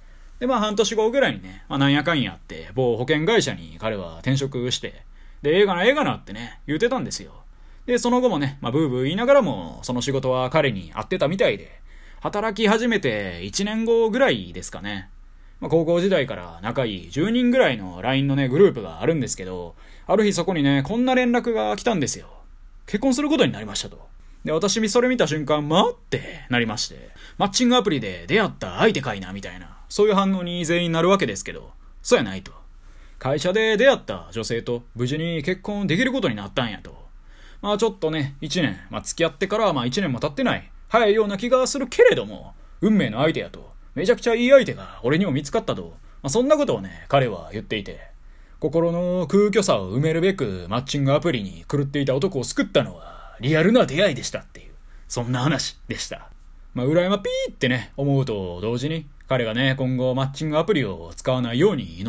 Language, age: Japanese, 20-39